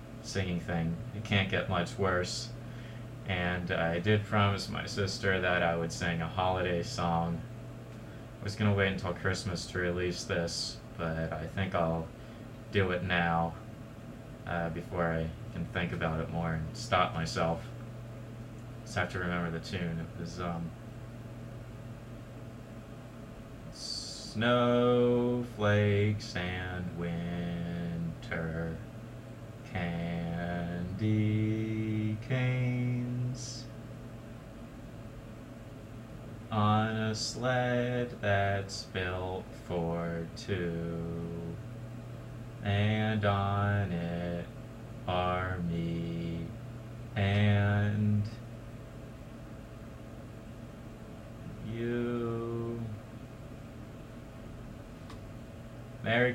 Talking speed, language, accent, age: 85 wpm, English, American, 20-39